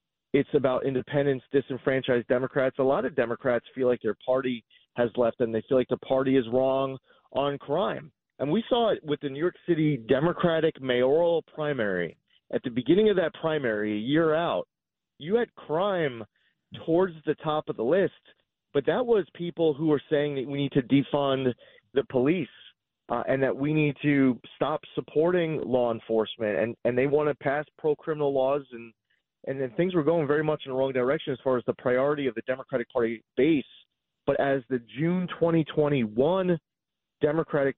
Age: 30-49